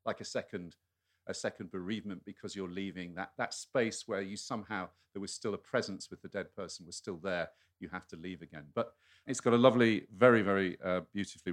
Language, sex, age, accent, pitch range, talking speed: English, male, 40-59, British, 85-110 Hz, 215 wpm